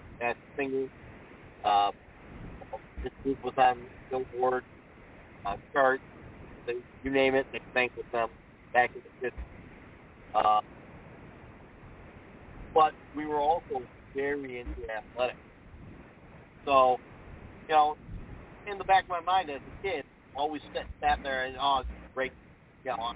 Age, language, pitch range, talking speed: 50-69, English, 120-145 Hz, 135 wpm